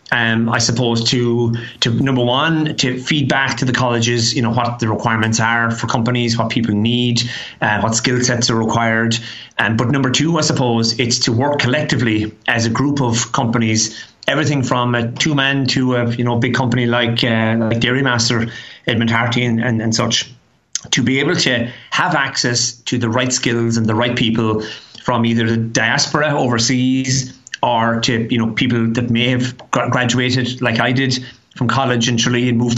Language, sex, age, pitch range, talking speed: English, male, 30-49, 115-130 Hz, 190 wpm